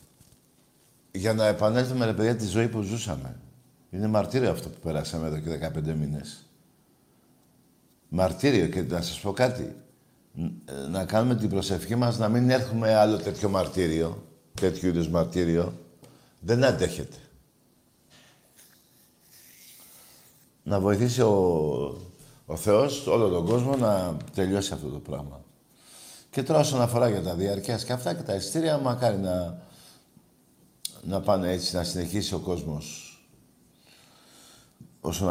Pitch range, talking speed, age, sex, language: 85-120 Hz, 125 wpm, 60-79, male, Greek